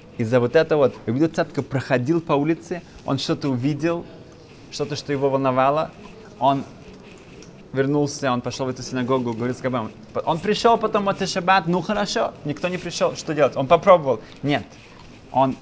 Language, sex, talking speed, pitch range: Russian, male, 155 wpm, 110-140 Hz